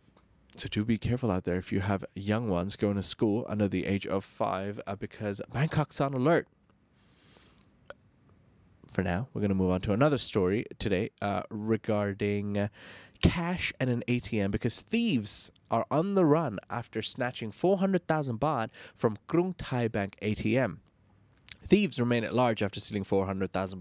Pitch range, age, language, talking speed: 105-135 Hz, 20-39, English, 160 wpm